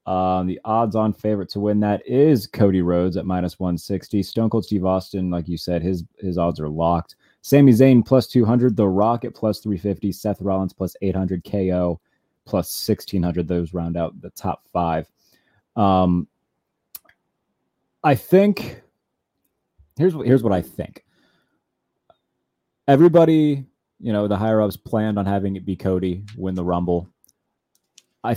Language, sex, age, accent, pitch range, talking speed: English, male, 30-49, American, 90-115 Hz, 145 wpm